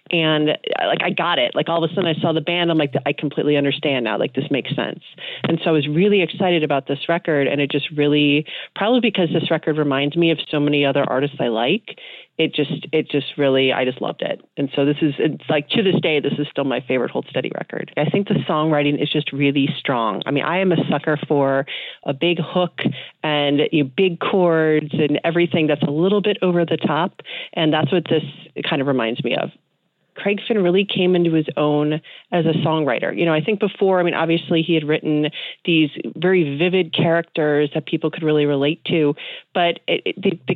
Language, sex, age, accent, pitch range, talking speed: English, female, 30-49, American, 150-175 Hz, 220 wpm